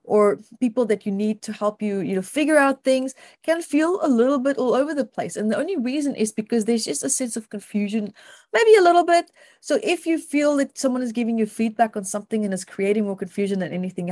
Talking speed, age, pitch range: 240 wpm, 30-49, 195-260 Hz